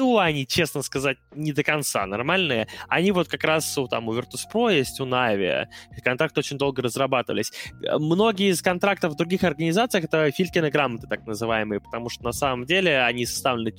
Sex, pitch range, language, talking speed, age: male, 125-175 Hz, Russian, 180 wpm, 20-39